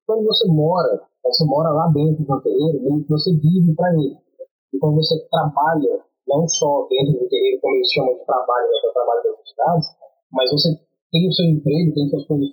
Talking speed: 190 wpm